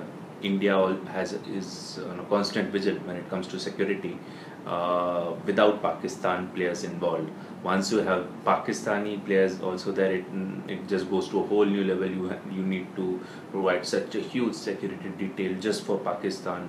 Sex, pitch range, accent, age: male, 90-95 Hz, Indian, 20-39